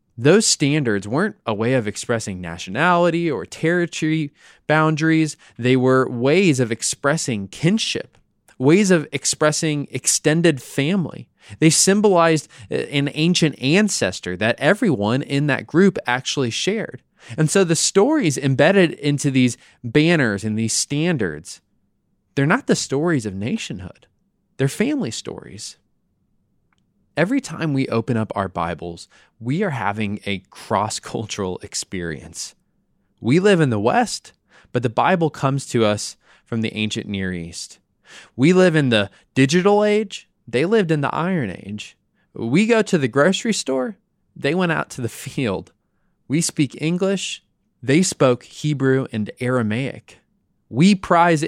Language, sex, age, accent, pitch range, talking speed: English, male, 20-39, American, 115-170 Hz, 135 wpm